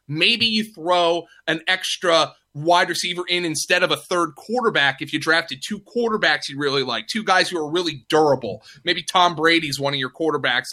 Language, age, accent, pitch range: English, 30-49, American, 145-190 Hz